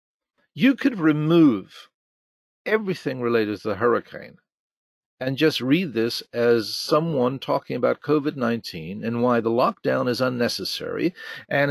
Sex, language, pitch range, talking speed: male, English, 115-165 Hz, 125 wpm